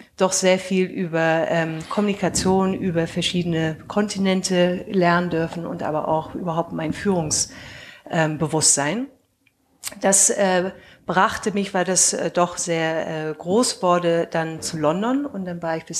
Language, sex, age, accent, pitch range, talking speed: German, female, 50-69, German, 170-205 Hz, 145 wpm